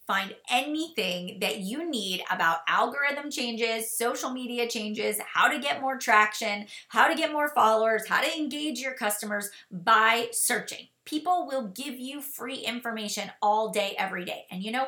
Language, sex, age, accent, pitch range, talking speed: English, female, 30-49, American, 205-265 Hz, 165 wpm